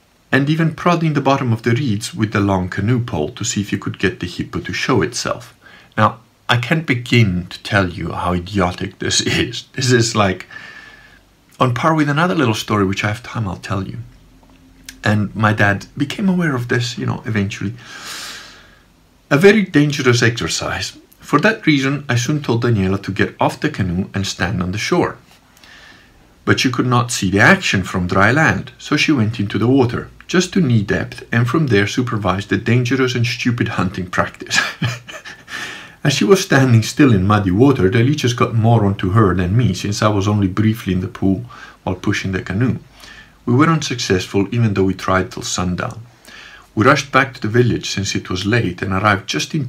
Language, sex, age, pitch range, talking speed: English, male, 50-69, 95-125 Hz, 195 wpm